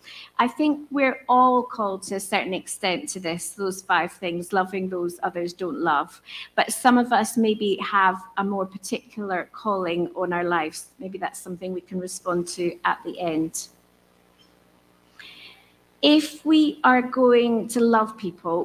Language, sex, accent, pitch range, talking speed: English, female, British, 175-220 Hz, 160 wpm